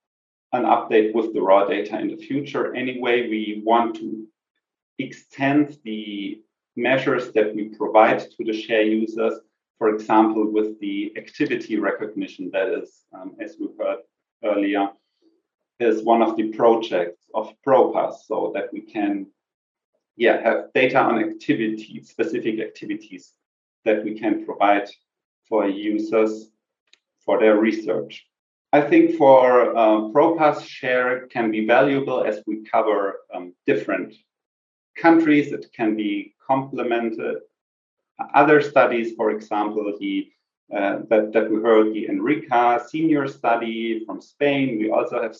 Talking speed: 130 wpm